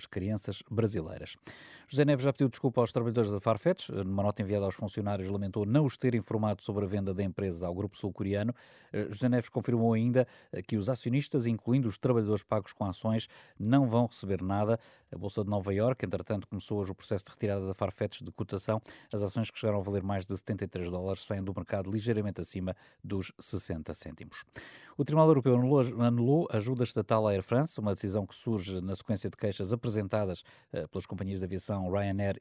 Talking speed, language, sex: 195 wpm, Portuguese, male